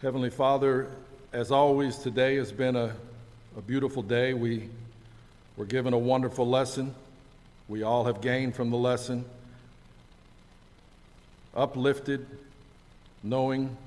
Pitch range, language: 115-135 Hz, English